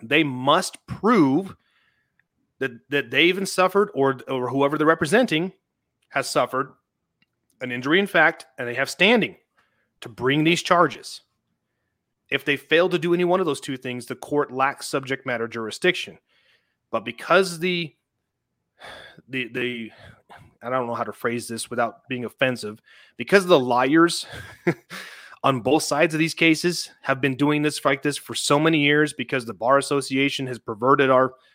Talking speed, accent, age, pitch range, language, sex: 160 wpm, American, 30-49, 125-160 Hz, English, male